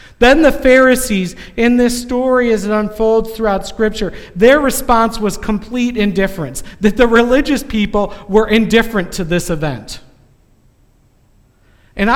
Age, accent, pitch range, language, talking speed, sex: 50-69, American, 145-210 Hz, English, 130 wpm, male